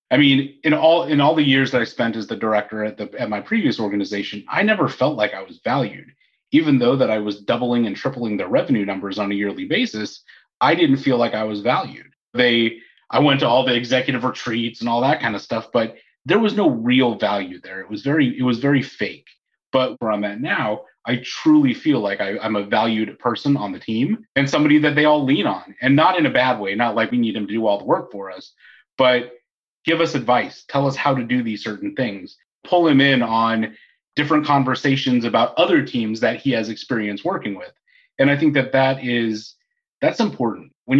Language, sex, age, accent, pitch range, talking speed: English, male, 30-49, American, 115-150 Hz, 225 wpm